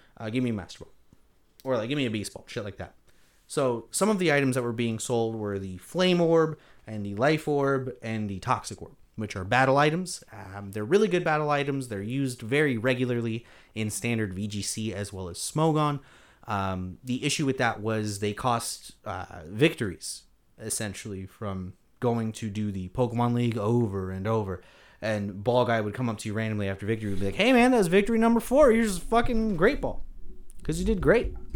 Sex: male